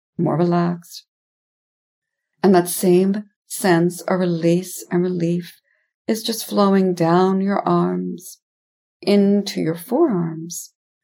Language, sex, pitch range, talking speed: English, female, 170-190 Hz, 105 wpm